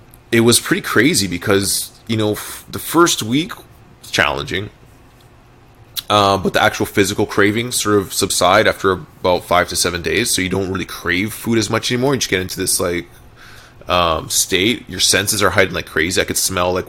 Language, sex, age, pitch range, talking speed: English, male, 20-39, 95-120 Hz, 195 wpm